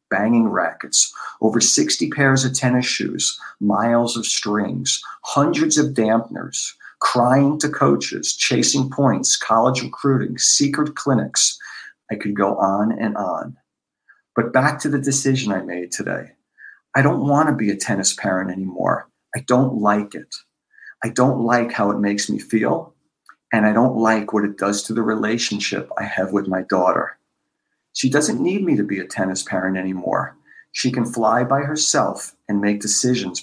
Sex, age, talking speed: male, 50-69, 160 wpm